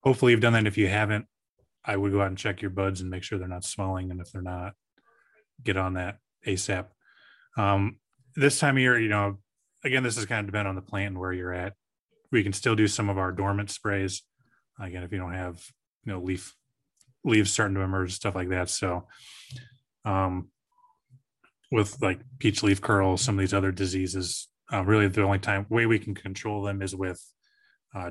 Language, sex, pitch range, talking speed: English, male, 95-105 Hz, 205 wpm